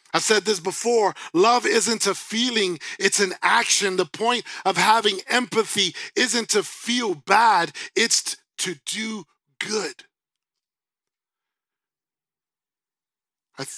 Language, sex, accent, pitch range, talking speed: English, male, American, 165-215 Hz, 110 wpm